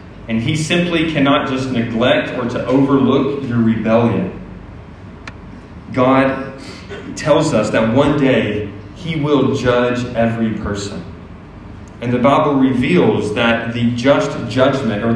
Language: English